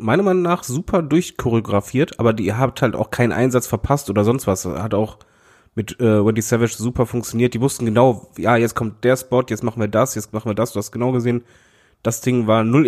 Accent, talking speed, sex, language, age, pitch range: German, 225 wpm, male, German, 20-39, 110-135 Hz